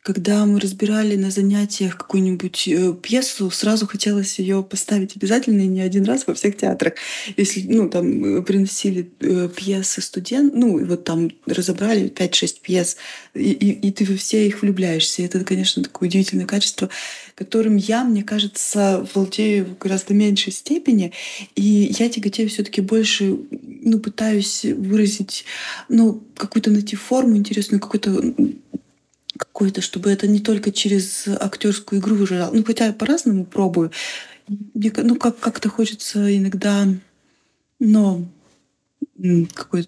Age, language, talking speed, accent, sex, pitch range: 20-39, Russian, 140 wpm, native, female, 185-220 Hz